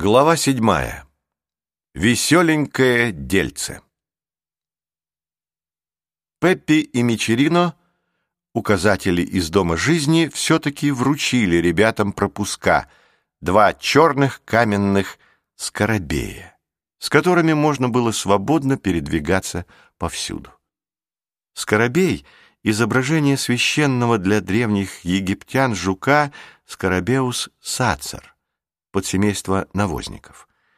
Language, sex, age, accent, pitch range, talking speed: Russian, male, 50-69, native, 95-135 Hz, 70 wpm